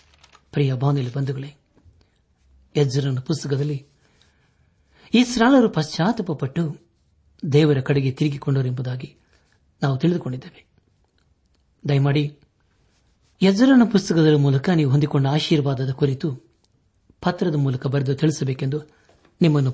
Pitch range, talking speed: 115-160 Hz, 75 wpm